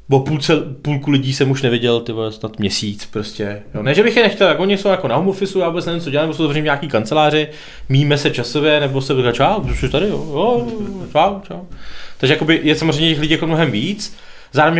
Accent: native